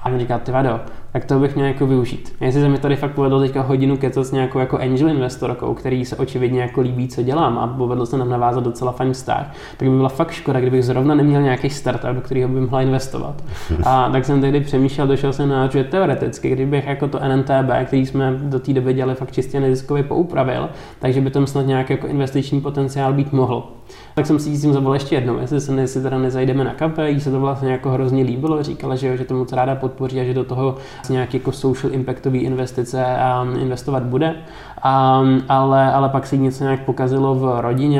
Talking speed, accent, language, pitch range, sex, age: 215 wpm, native, Czech, 130-140 Hz, male, 20-39